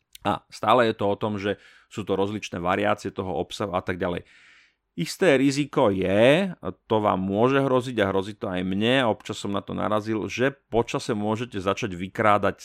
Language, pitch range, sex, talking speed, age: Slovak, 95-120 Hz, male, 185 wpm, 30-49